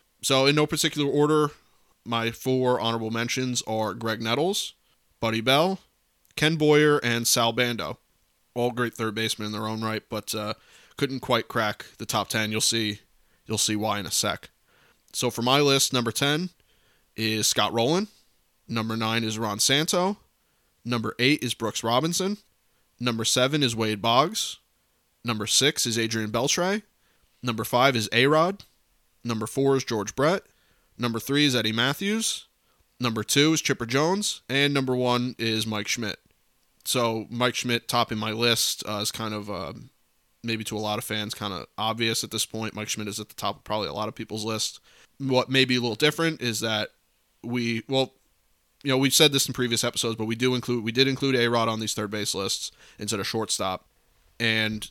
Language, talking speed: English, 185 wpm